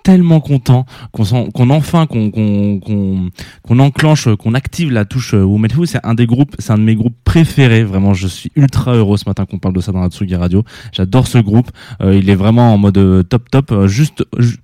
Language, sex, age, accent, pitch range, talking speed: French, male, 20-39, French, 100-130 Hz, 235 wpm